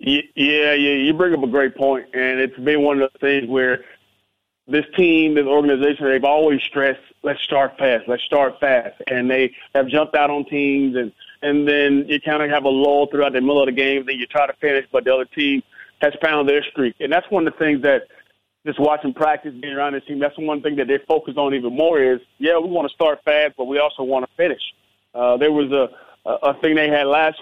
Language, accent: English, American